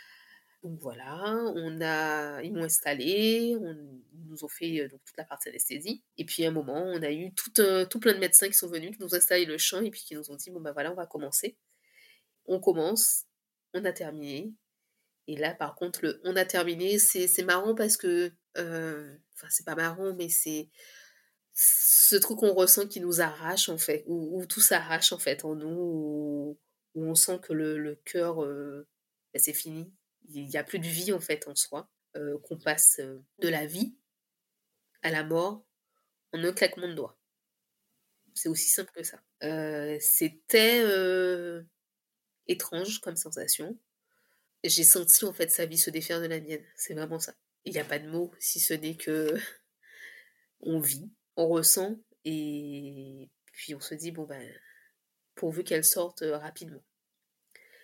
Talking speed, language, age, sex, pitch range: 185 wpm, French, 20-39, female, 155-195 Hz